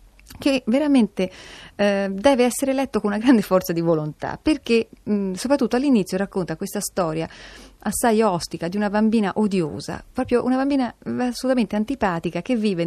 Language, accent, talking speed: Italian, native, 145 wpm